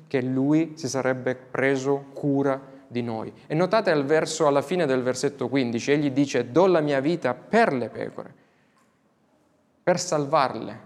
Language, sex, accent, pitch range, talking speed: Italian, male, native, 130-165 Hz, 155 wpm